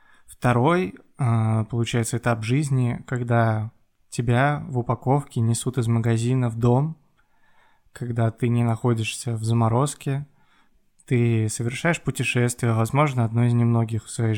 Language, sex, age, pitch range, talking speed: Russian, male, 20-39, 115-130 Hz, 115 wpm